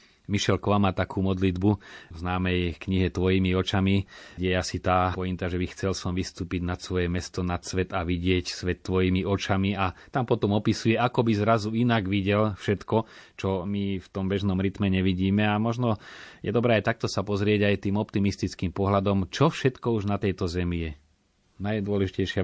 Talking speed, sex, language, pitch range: 175 wpm, male, Slovak, 90-110 Hz